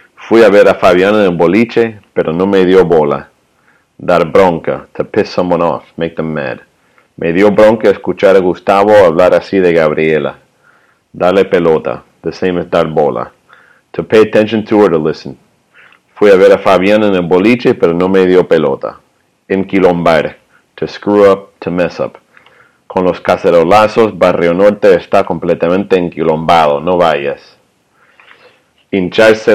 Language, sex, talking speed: English, male, 155 wpm